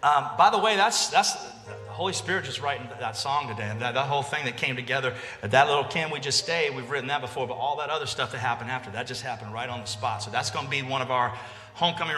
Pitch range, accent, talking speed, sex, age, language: 120-170 Hz, American, 275 wpm, male, 30-49, English